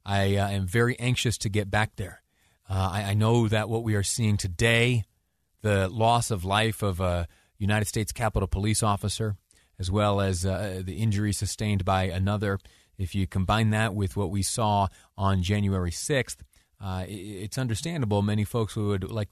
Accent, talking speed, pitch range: American, 180 wpm, 95-110 Hz